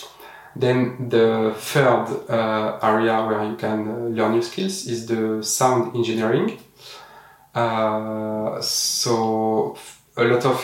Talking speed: 120 wpm